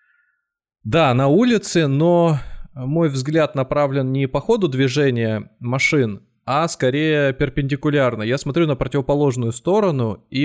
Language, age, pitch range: Russian, 20-39, 115-150 Hz